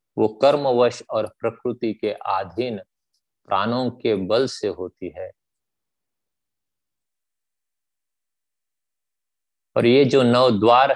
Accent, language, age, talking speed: native, Hindi, 50-69, 90 wpm